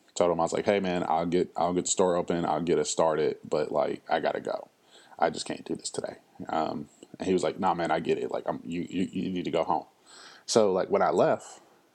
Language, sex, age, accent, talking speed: English, male, 20-39, American, 270 wpm